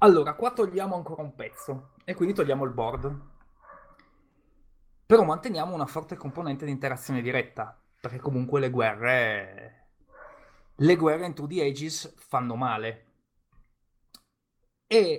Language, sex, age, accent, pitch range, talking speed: Italian, male, 20-39, native, 120-150 Hz, 125 wpm